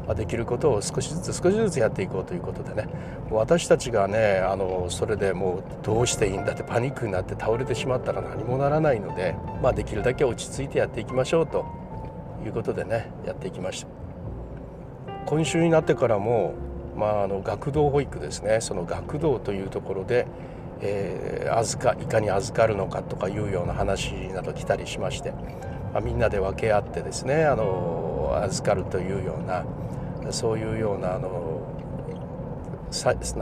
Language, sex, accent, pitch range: Japanese, male, native, 100-160 Hz